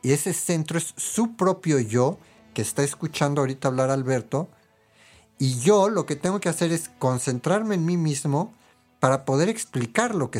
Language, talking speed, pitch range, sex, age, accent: Spanish, 175 wpm, 115-160 Hz, male, 50-69, Mexican